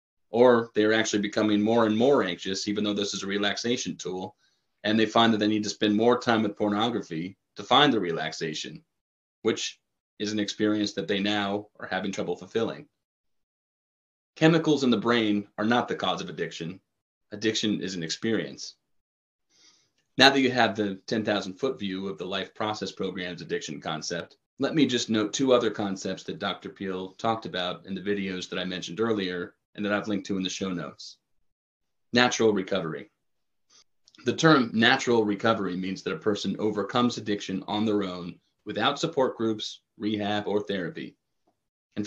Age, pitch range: 30-49, 95-115 Hz